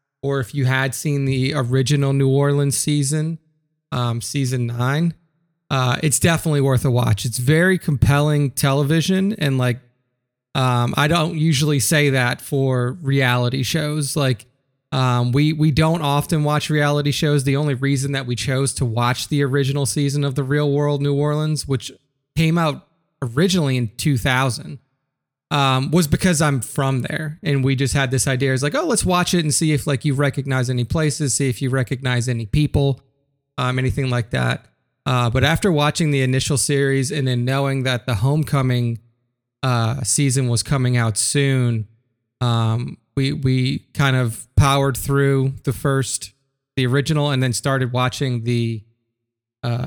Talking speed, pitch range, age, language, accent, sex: 165 wpm, 125-145 Hz, 30-49, English, American, male